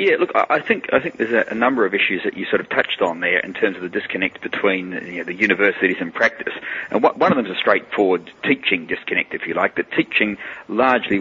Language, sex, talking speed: English, male, 230 wpm